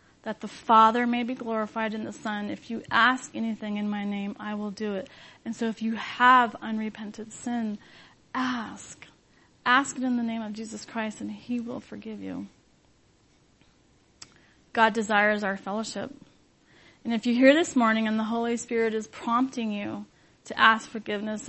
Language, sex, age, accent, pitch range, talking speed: English, female, 30-49, American, 210-235 Hz, 170 wpm